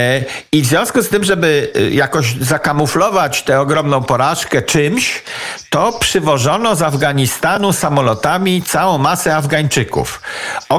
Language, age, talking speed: Polish, 50-69, 115 wpm